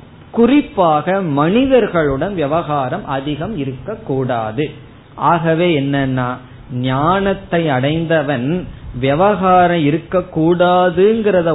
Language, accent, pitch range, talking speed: Tamil, native, 135-170 Hz, 50 wpm